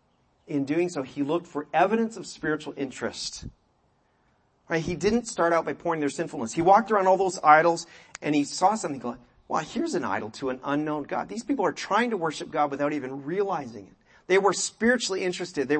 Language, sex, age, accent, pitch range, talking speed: English, male, 40-59, American, 140-185 Hz, 210 wpm